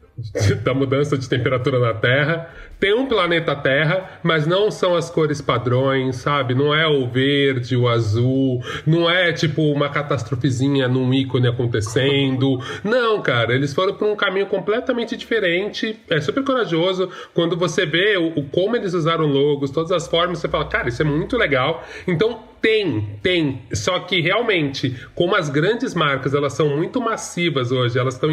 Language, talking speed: Portuguese, 165 wpm